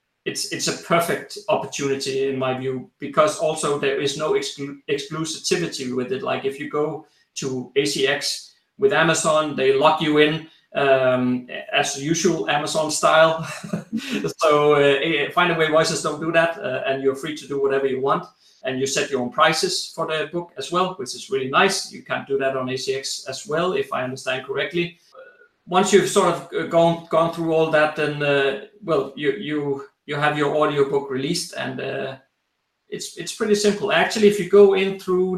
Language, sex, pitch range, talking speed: English, male, 140-185 Hz, 190 wpm